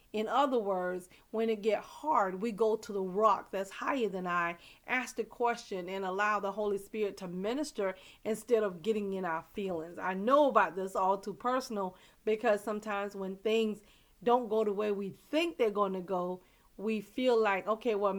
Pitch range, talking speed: 195-235 Hz, 190 wpm